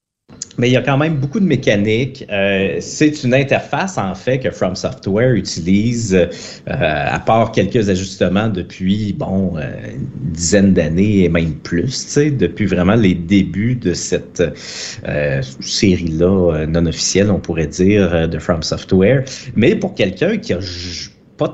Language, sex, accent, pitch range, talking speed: French, male, Canadian, 90-120 Hz, 150 wpm